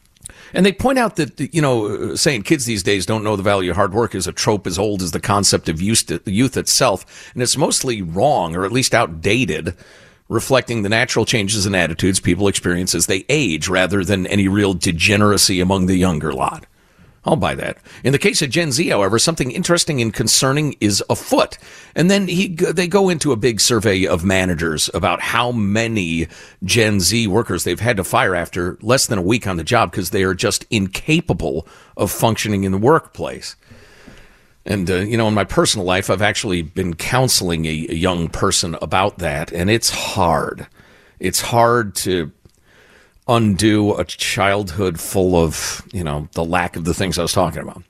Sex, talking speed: male, 190 wpm